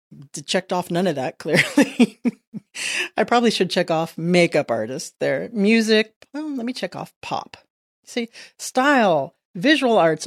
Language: English